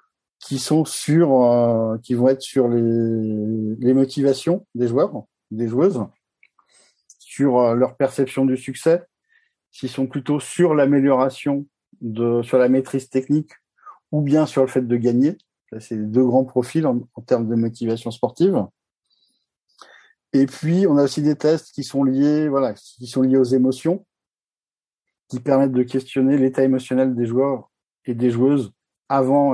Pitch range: 120-145 Hz